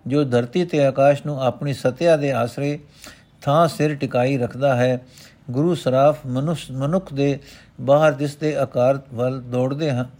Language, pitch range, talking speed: Punjabi, 125-150 Hz, 145 wpm